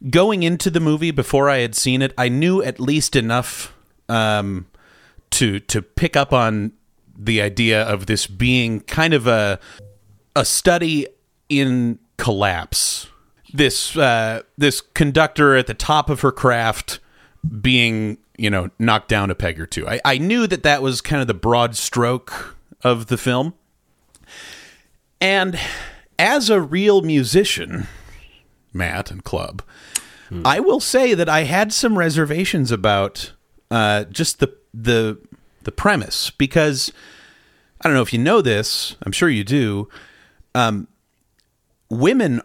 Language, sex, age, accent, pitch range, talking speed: English, male, 30-49, American, 110-160 Hz, 145 wpm